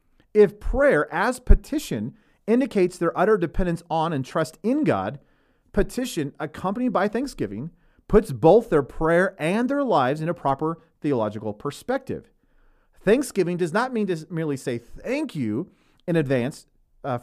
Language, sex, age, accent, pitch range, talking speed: English, male, 40-59, American, 145-220 Hz, 145 wpm